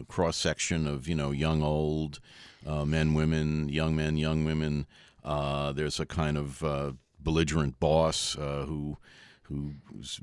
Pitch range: 80-105 Hz